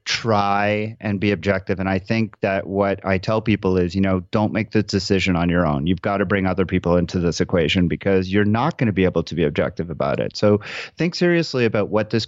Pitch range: 95-115 Hz